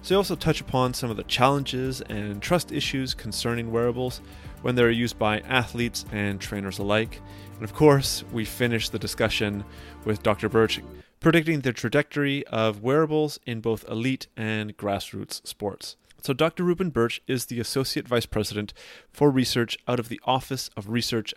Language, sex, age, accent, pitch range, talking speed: English, male, 30-49, American, 105-130 Hz, 170 wpm